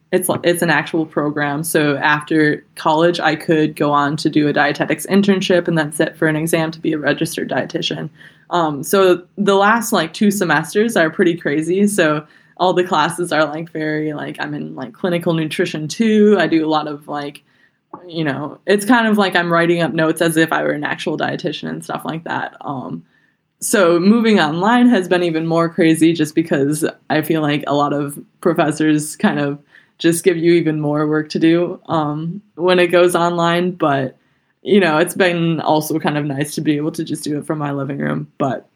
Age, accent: 20-39, American